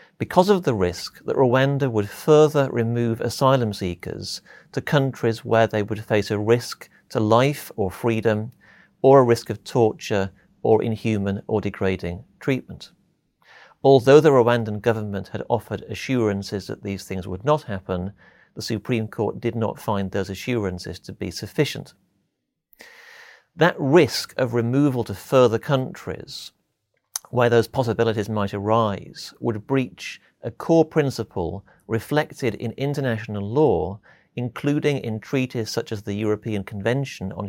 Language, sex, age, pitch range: English, male, 40-59, 100-130 Hz